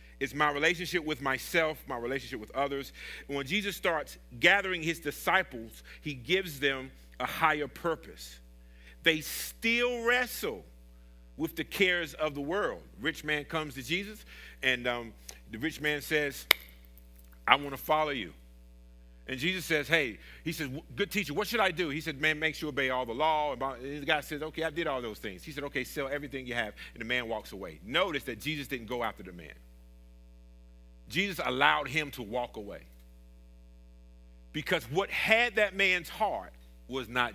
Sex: male